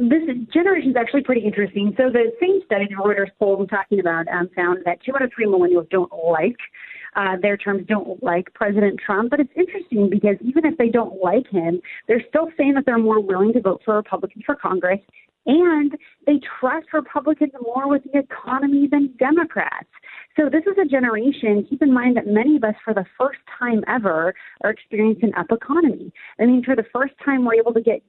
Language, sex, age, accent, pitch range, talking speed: English, female, 30-49, American, 200-260 Hz, 210 wpm